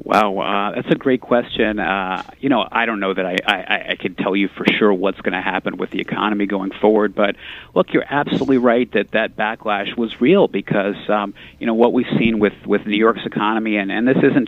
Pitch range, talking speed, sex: 100-115 Hz, 230 wpm, male